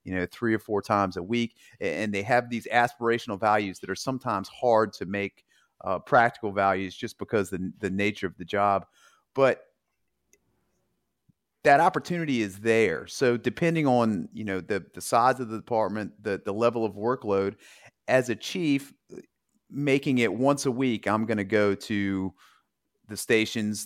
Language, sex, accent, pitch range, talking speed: English, male, American, 100-130 Hz, 170 wpm